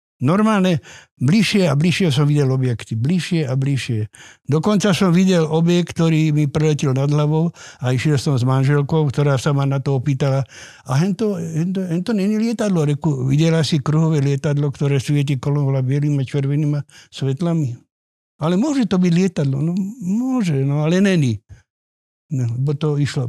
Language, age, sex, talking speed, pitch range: Slovak, 60-79, male, 155 wpm, 135-175 Hz